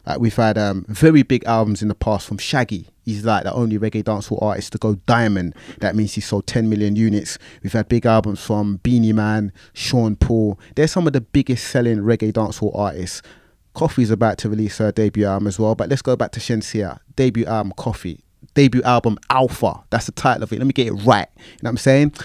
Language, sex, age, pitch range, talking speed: English, male, 30-49, 105-130 Hz, 225 wpm